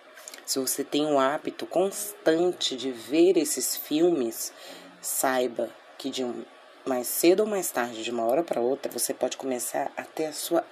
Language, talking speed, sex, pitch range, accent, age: Portuguese, 170 wpm, female, 125-180 Hz, Brazilian, 30-49